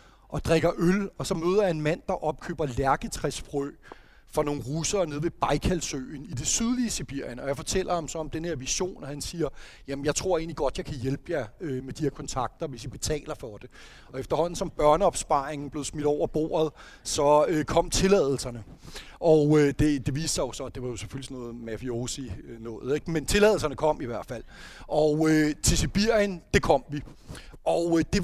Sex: male